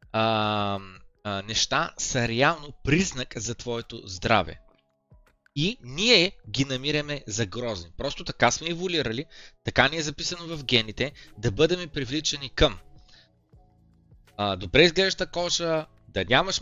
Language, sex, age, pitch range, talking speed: Bulgarian, male, 20-39, 110-165 Hz, 125 wpm